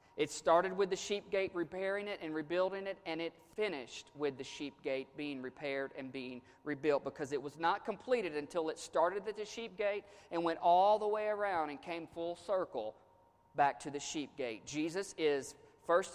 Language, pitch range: English, 140-190 Hz